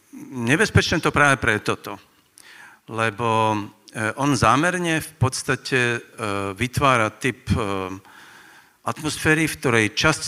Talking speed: 95 wpm